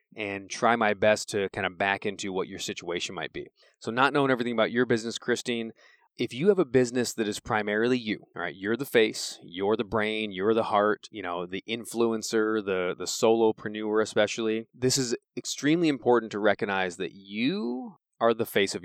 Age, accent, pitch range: 20-39, American, 105-130 Hz